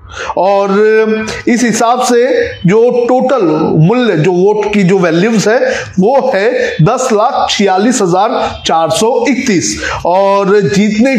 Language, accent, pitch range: Hindi, native, 185-235 Hz